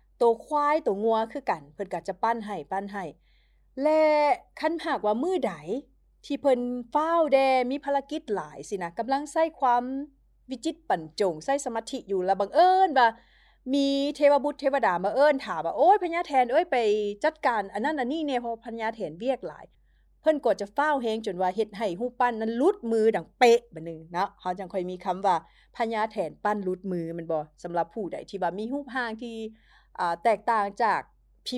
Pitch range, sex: 190-275 Hz, female